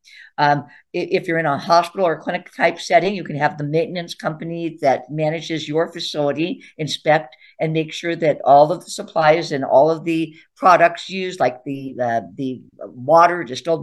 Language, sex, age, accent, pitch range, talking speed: English, female, 50-69, American, 145-175 Hz, 175 wpm